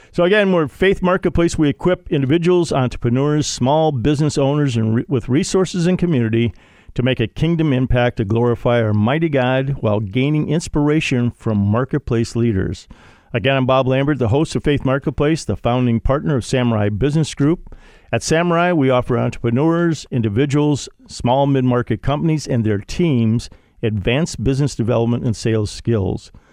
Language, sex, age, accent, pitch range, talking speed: English, male, 50-69, American, 115-160 Hz, 150 wpm